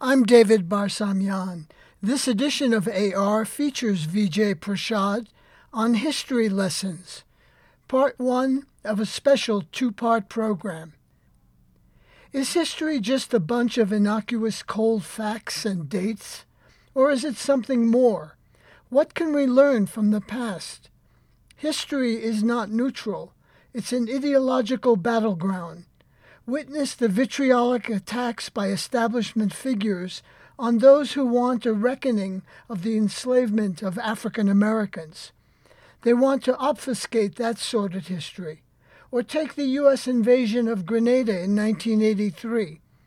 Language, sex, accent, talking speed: English, male, American, 120 wpm